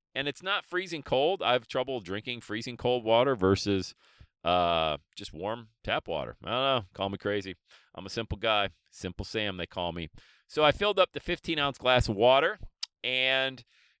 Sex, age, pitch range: male, 40-59, 110-155 Hz